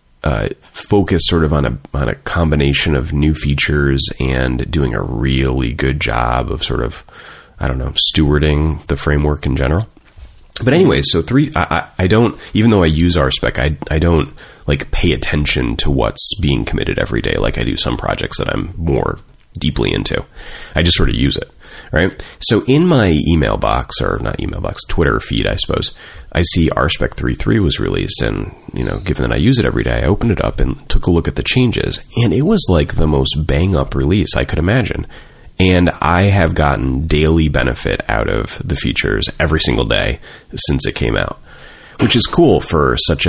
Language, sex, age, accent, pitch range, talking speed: English, male, 30-49, American, 70-85 Hz, 200 wpm